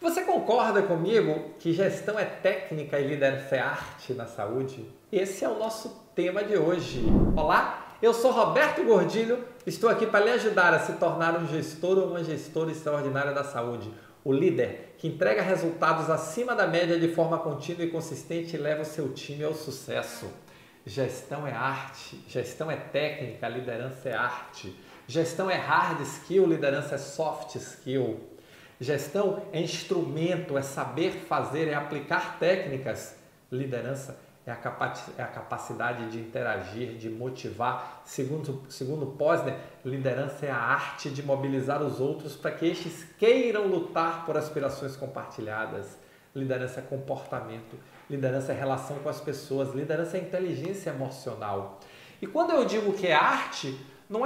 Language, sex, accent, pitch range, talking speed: Portuguese, male, Brazilian, 135-180 Hz, 150 wpm